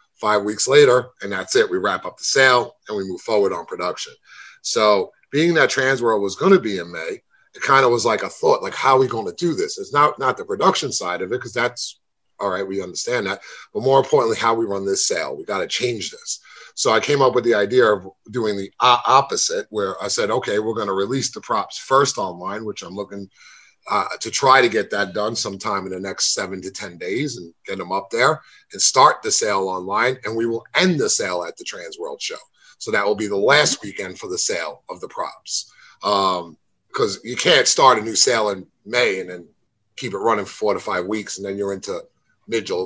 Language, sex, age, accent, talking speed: English, male, 30-49, American, 240 wpm